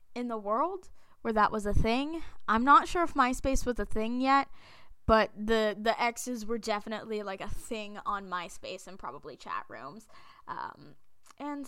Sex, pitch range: female, 205-270 Hz